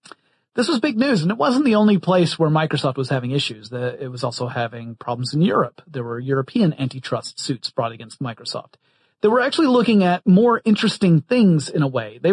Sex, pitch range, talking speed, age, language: male, 135-200 Hz, 205 wpm, 30-49, English